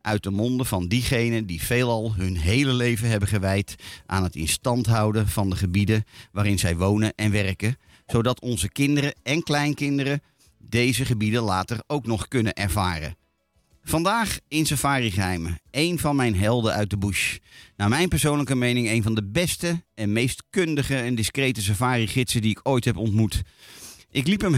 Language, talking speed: Dutch, 175 wpm